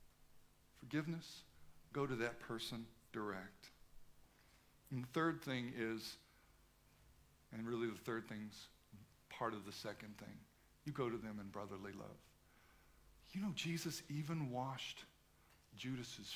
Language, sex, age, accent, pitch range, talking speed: English, male, 60-79, American, 105-150 Hz, 125 wpm